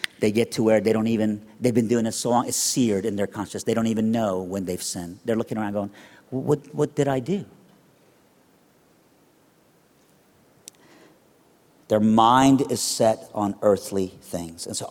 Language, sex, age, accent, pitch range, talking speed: English, male, 50-69, American, 100-125 Hz, 175 wpm